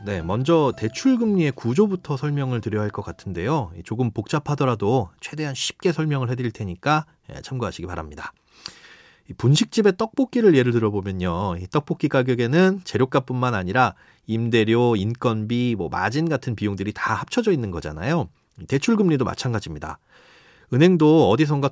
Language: Korean